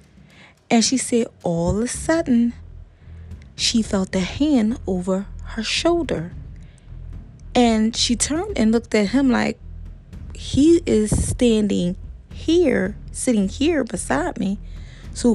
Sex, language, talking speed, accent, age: female, English, 120 wpm, American, 20-39